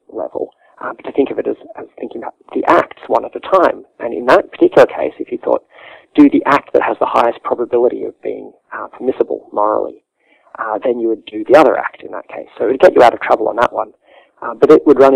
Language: English